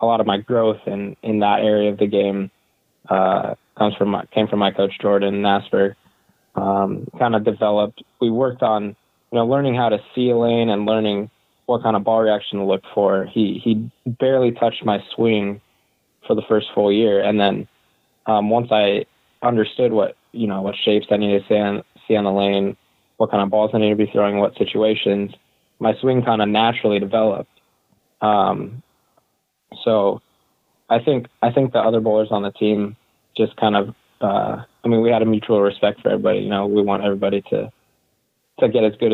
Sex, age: male, 20-39